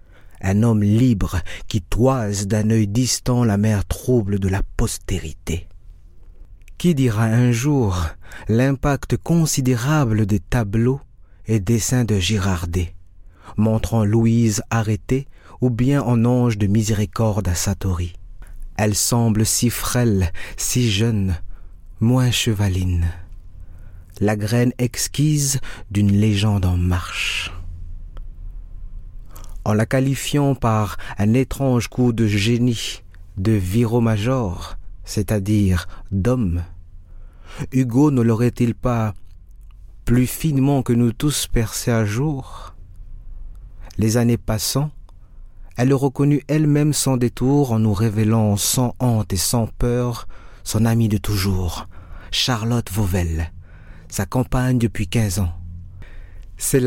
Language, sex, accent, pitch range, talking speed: French, male, French, 90-120 Hz, 110 wpm